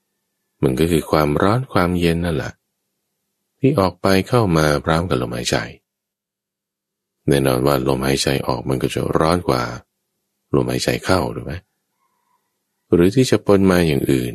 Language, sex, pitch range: Thai, male, 70-100 Hz